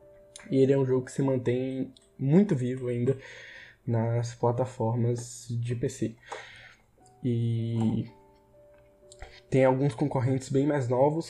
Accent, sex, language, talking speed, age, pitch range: Brazilian, male, Portuguese, 115 wpm, 10-29, 120-135 Hz